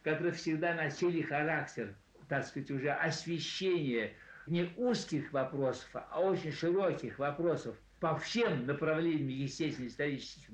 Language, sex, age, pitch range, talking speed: Russian, male, 60-79, 135-175 Hz, 110 wpm